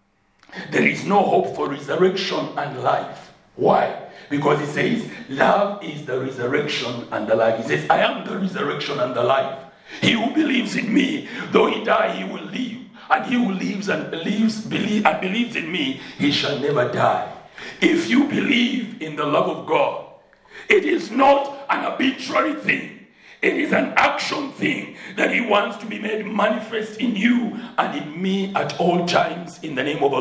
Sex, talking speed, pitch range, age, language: male, 180 wpm, 195-250 Hz, 60-79, English